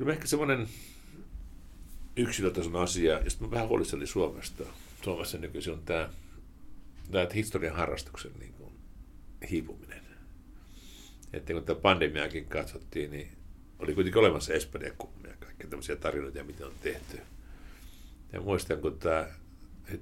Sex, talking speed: male, 120 wpm